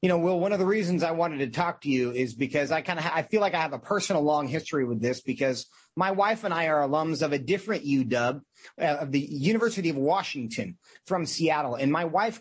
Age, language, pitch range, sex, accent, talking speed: 30-49, English, 150-205 Hz, male, American, 245 wpm